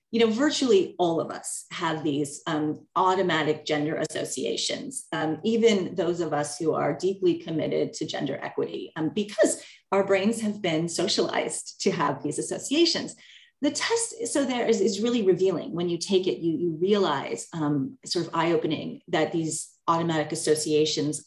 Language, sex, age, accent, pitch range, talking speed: English, female, 30-49, American, 160-220 Hz, 165 wpm